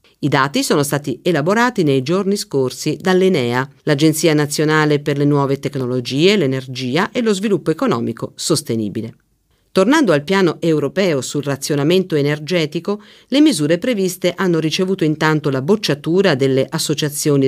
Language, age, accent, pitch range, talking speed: Italian, 50-69, native, 140-175 Hz, 130 wpm